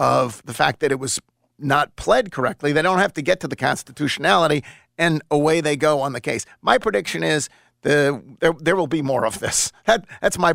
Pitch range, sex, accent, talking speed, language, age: 120-155 Hz, male, American, 205 wpm, English, 50-69